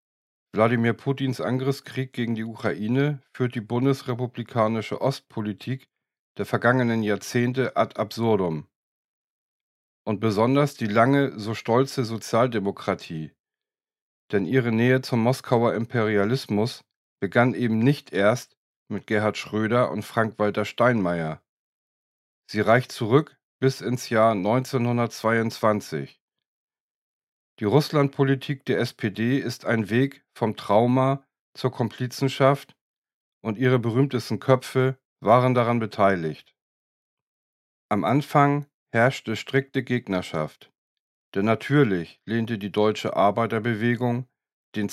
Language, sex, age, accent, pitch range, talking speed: German, male, 40-59, German, 110-130 Hz, 100 wpm